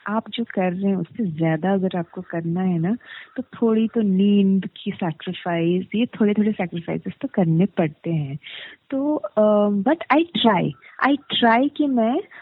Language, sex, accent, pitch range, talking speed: Hindi, female, native, 185-245 Hz, 160 wpm